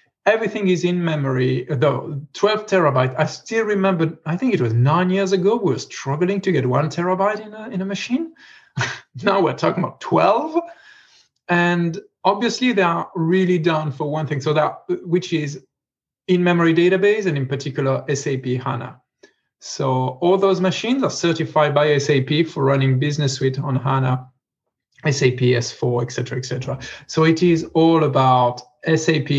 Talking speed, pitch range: 165 wpm, 135-185 Hz